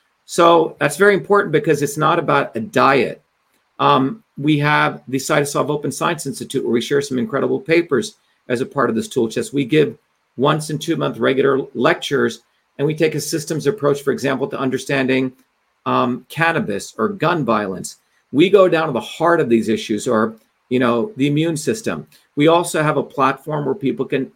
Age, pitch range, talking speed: 40-59, 130-155 Hz, 180 wpm